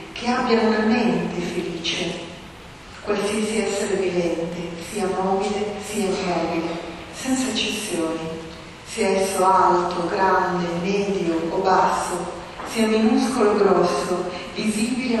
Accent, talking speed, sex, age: native, 105 wpm, female, 40-59